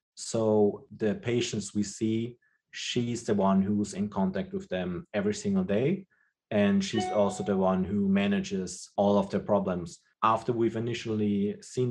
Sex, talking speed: male, 155 wpm